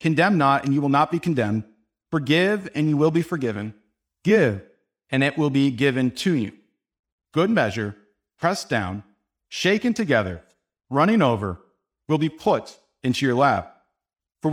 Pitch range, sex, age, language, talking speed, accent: 125-160 Hz, male, 50-69, English, 155 wpm, American